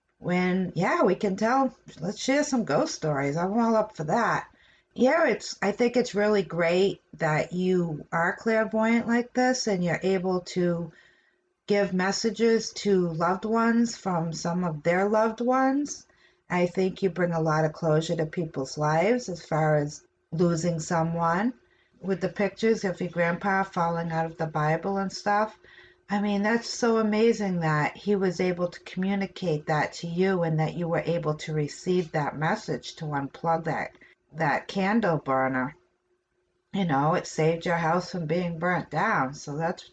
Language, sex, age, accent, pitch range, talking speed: English, female, 50-69, American, 165-200 Hz, 170 wpm